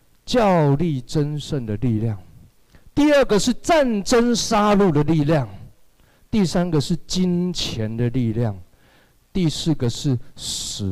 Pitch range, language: 115-180 Hz, Chinese